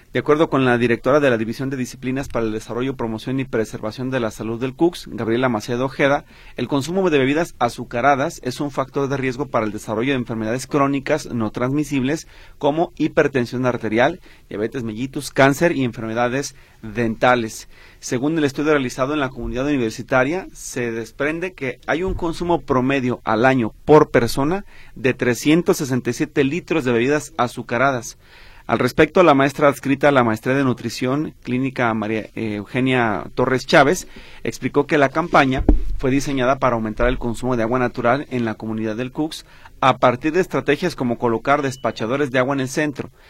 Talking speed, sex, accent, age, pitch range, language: 170 wpm, male, Mexican, 40-59, 120-140 Hz, Spanish